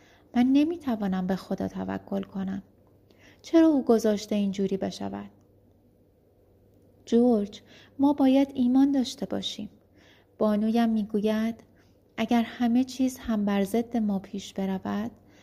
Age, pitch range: 30-49, 185-225 Hz